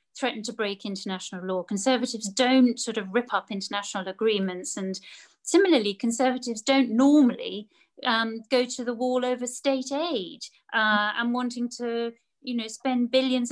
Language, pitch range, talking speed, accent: English, 220-265 Hz, 150 wpm, British